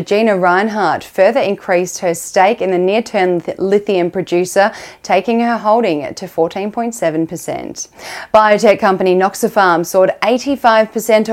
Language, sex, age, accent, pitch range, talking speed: English, female, 10-29, Australian, 175-215 Hz, 110 wpm